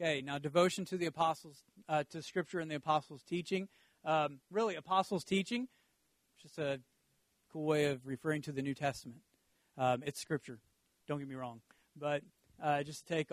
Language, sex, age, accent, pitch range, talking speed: English, male, 40-59, American, 150-195 Hz, 175 wpm